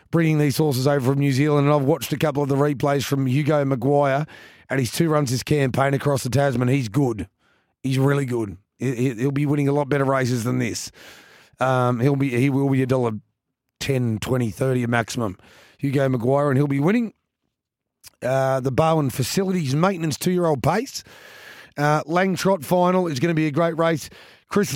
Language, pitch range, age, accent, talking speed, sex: English, 130-160 Hz, 30-49, Australian, 185 wpm, male